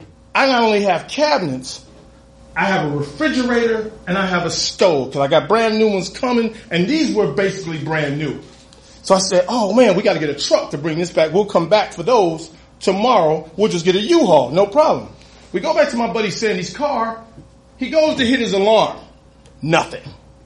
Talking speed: 205 wpm